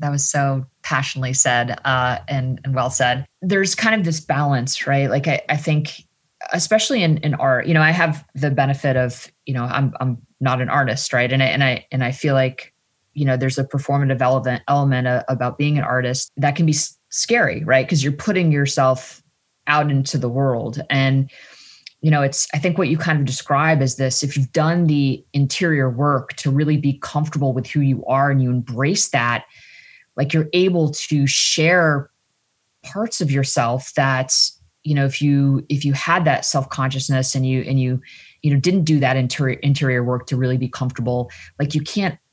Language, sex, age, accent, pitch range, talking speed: English, female, 20-39, American, 130-150 Hz, 200 wpm